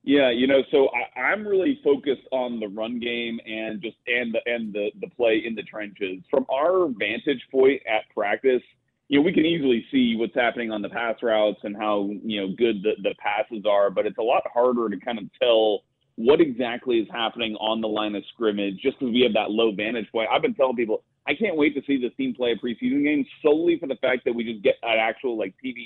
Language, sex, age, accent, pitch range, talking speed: English, male, 30-49, American, 110-125 Hz, 240 wpm